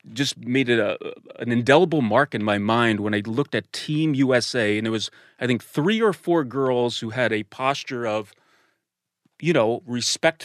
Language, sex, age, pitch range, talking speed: English, male, 30-49, 115-155 Hz, 190 wpm